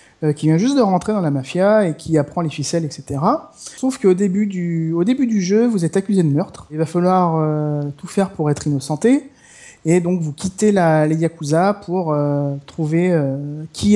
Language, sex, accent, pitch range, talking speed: French, male, French, 160-195 Hz, 205 wpm